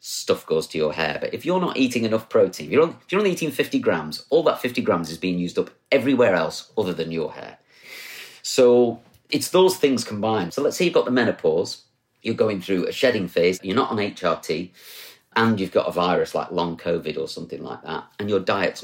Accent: British